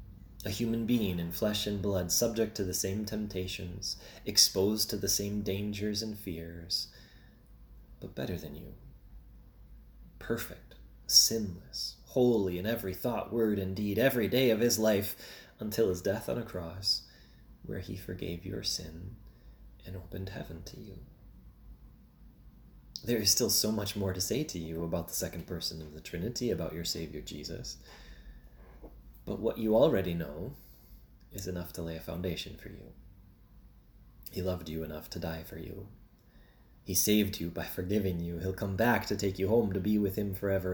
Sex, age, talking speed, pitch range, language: male, 20-39, 165 wpm, 85-105 Hz, English